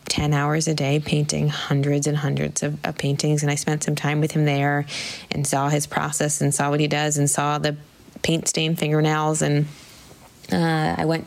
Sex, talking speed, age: female, 200 wpm, 20-39